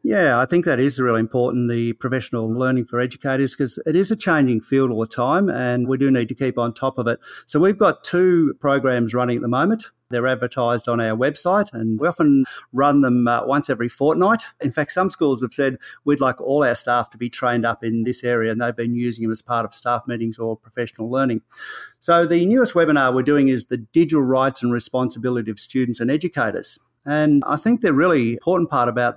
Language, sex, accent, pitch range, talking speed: English, male, Australian, 120-140 Hz, 225 wpm